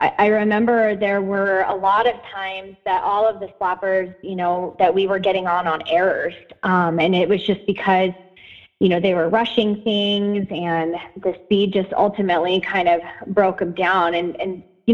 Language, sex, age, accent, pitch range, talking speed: English, female, 20-39, American, 190-225 Hz, 190 wpm